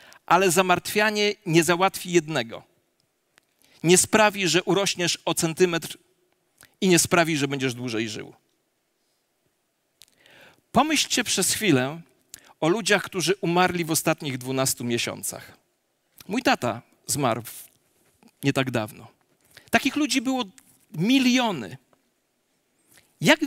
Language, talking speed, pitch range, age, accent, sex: Polish, 100 wpm, 155-225 Hz, 40-59, native, male